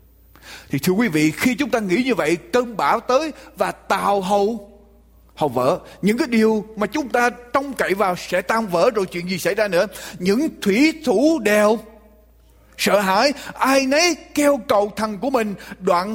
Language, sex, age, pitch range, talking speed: Ukrainian, male, 30-49, 180-255 Hz, 185 wpm